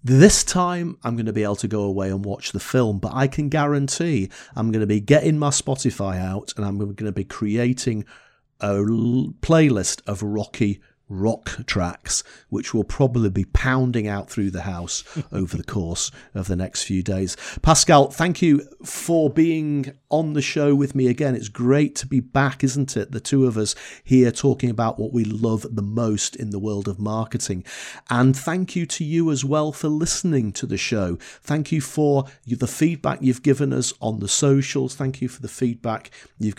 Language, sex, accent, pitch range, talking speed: English, male, British, 105-140 Hz, 195 wpm